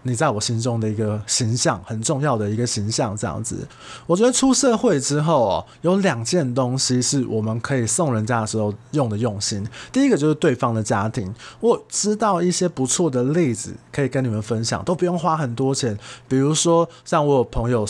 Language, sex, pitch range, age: Chinese, male, 115-155 Hz, 20-39